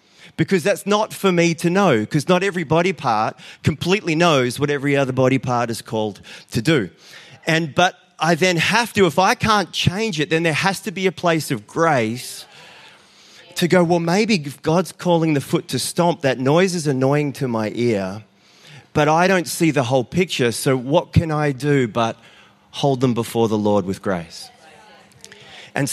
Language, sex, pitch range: English, male, 110-165 Hz